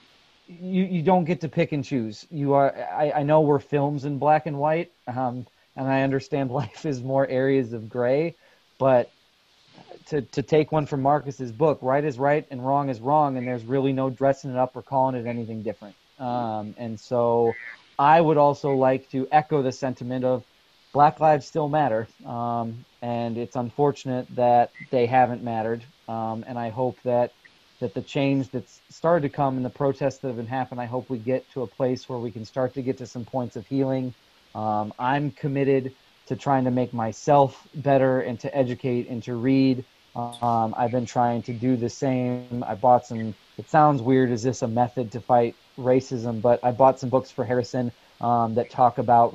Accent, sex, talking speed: American, male, 200 wpm